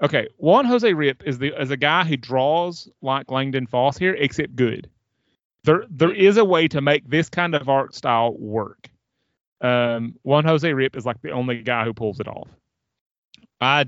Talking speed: 190 wpm